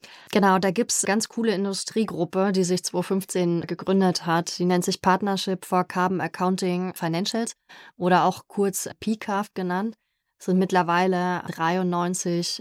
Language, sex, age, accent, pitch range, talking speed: German, female, 30-49, German, 175-195 Hz, 145 wpm